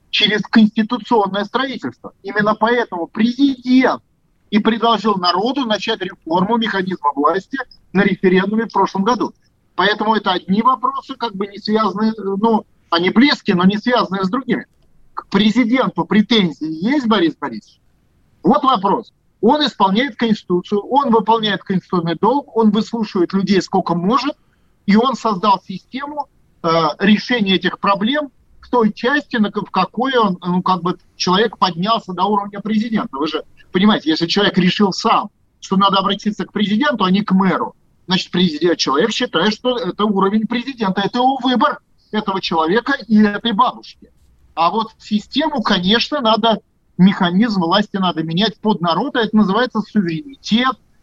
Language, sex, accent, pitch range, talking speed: Russian, male, native, 190-235 Hz, 140 wpm